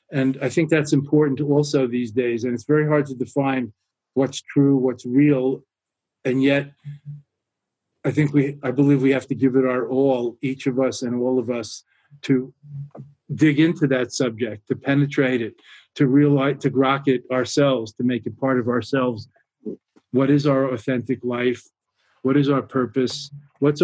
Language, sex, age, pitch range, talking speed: English, male, 40-59, 125-140 Hz, 175 wpm